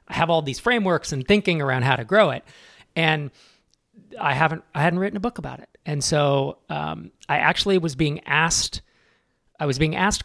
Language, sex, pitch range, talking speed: English, male, 130-170 Hz, 195 wpm